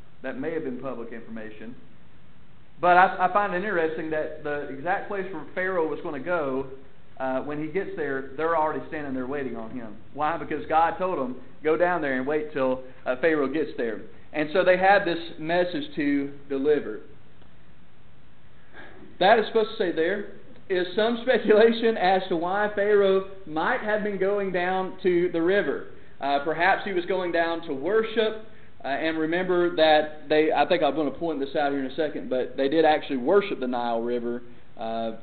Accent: American